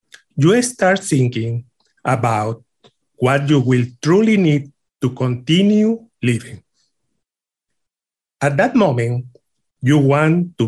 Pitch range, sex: 125-170 Hz, male